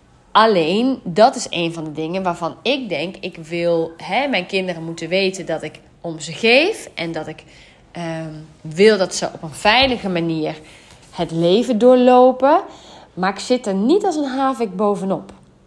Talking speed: 170 wpm